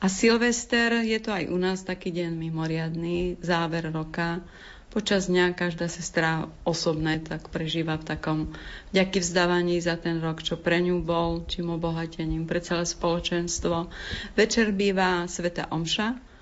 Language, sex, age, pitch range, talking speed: Slovak, female, 30-49, 165-190 Hz, 145 wpm